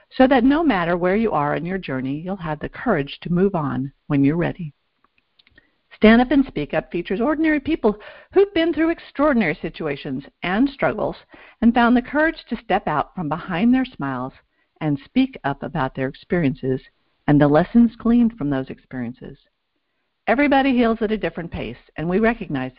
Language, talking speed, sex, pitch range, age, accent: English, 180 wpm, female, 145-240 Hz, 50-69, American